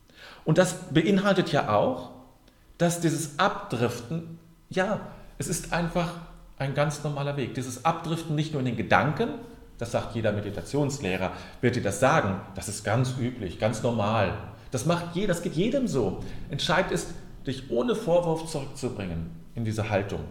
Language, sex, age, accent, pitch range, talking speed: German, male, 40-59, German, 100-155 Hz, 155 wpm